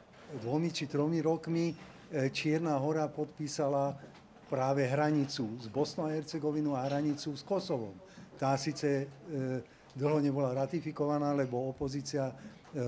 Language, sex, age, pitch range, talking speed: Slovak, male, 50-69, 130-155 Hz, 115 wpm